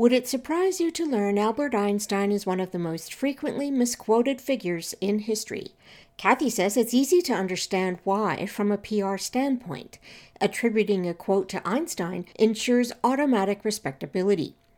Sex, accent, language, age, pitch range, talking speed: female, American, English, 60-79, 190-250 Hz, 150 wpm